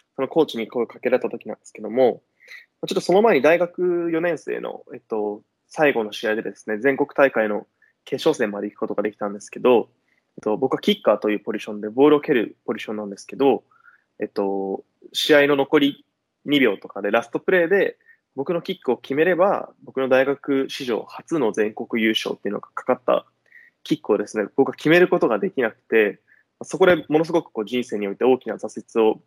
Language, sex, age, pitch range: English, male, 20-39, 110-165 Hz